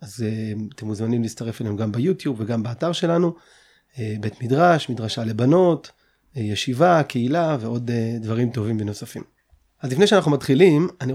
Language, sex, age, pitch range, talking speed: Hebrew, male, 30-49, 115-145 Hz, 135 wpm